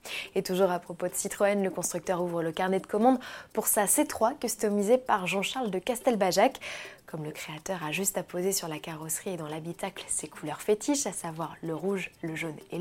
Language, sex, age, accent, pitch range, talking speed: French, female, 20-39, French, 180-250 Hz, 205 wpm